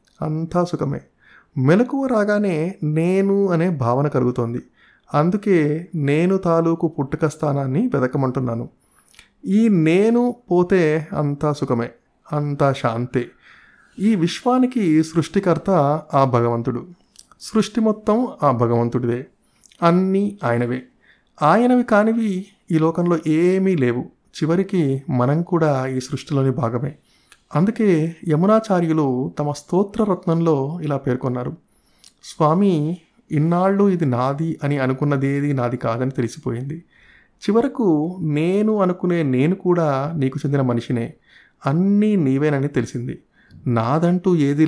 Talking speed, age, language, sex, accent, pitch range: 95 wpm, 30-49, Telugu, male, native, 135-180 Hz